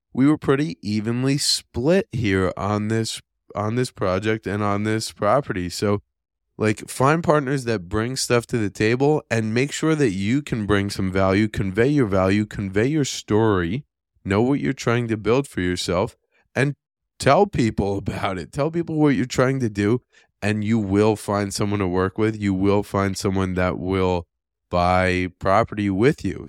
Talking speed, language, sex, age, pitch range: 175 wpm, English, male, 20-39, 95-120 Hz